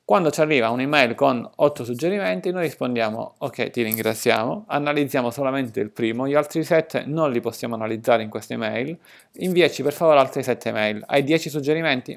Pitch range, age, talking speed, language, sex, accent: 120-155 Hz, 30-49, 175 wpm, Italian, male, native